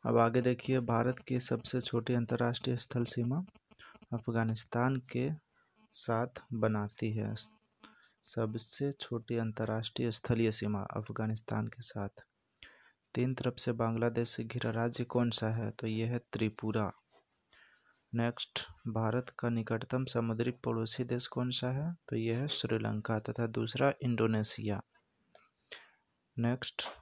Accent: native